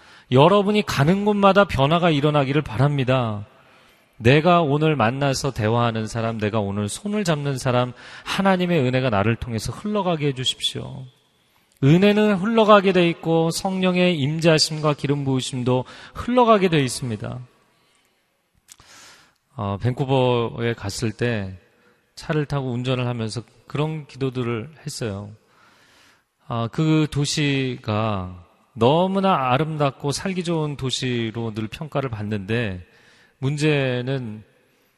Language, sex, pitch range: Korean, male, 115-155 Hz